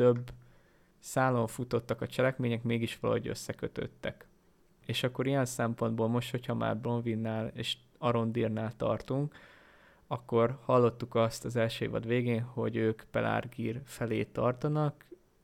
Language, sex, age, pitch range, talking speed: Hungarian, male, 20-39, 115-125 Hz, 120 wpm